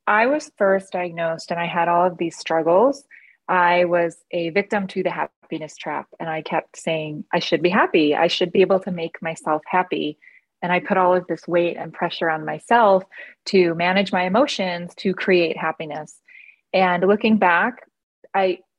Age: 20-39